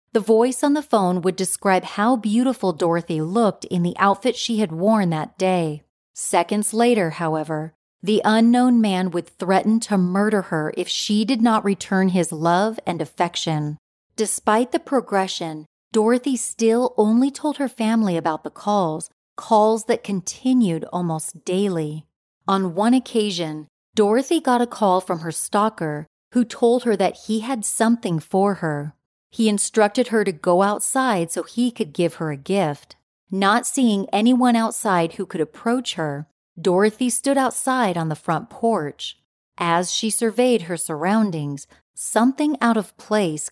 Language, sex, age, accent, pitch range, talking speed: English, female, 30-49, American, 170-230 Hz, 155 wpm